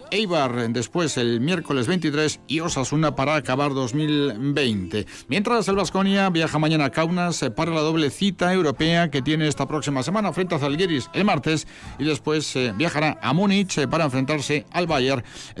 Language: Spanish